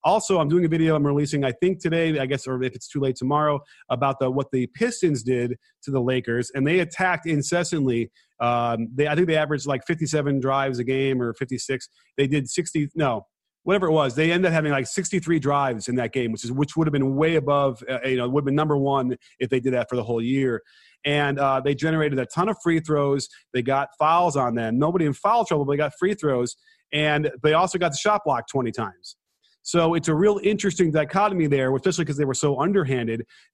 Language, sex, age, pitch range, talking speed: English, male, 30-49, 130-160 Hz, 235 wpm